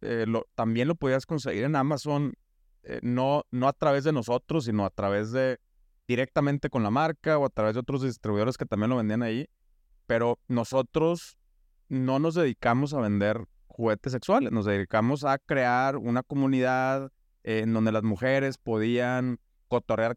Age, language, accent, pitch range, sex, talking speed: 30-49, Spanish, Mexican, 115-145 Hz, male, 165 wpm